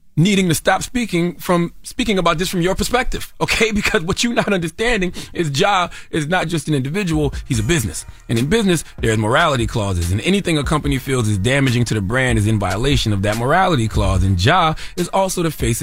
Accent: American